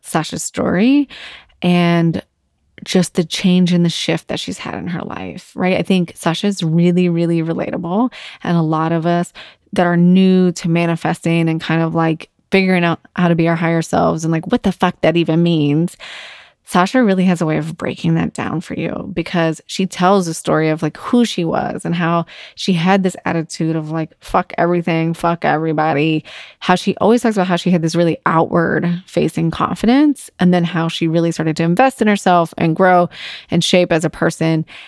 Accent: American